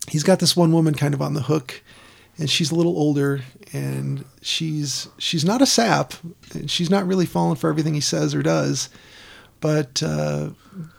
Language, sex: English, male